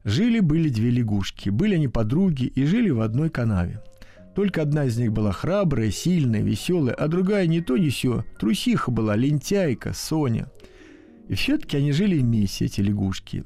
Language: Russian